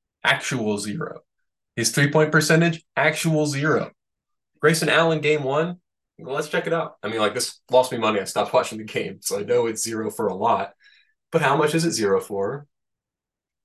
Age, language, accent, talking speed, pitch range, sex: 20-39, English, American, 185 wpm, 110-165 Hz, male